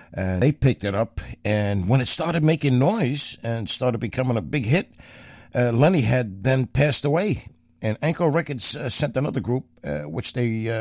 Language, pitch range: English, 100-140 Hz